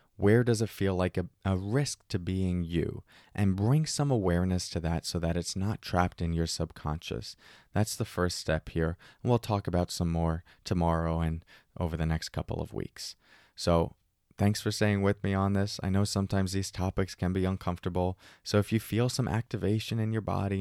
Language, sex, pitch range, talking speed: English, male, 85-115 Hz, 200 wpm